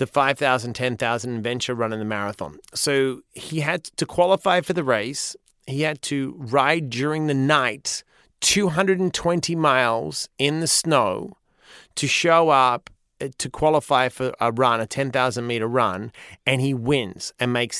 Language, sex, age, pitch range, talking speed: English, male, 30-49, 130-165 Hz, 150 wpm